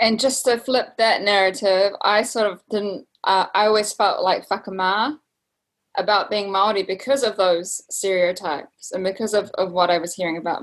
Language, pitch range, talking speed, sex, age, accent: English, 175-200 Hz, 180 wpm, female, 10-29, Australian